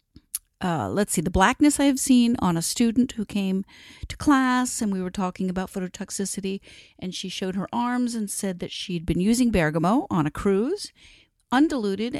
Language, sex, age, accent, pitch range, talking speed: English, female, 50-69, American, 175-240 Hz, 175 wpm